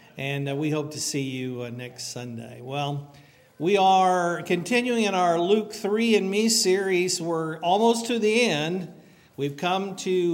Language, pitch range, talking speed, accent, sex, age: English, 140-180 Hz, 155 wpm, American, male, 50-69